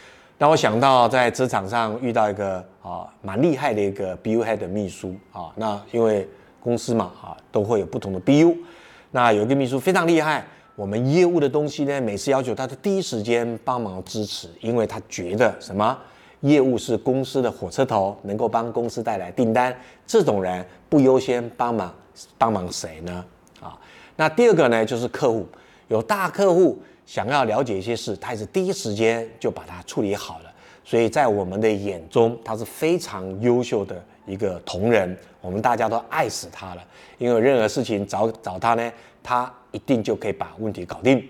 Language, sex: Chinese, male